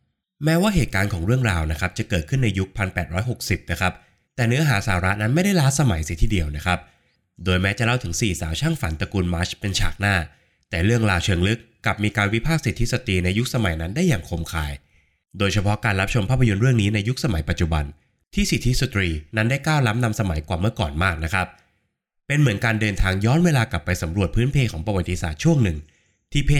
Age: 20-39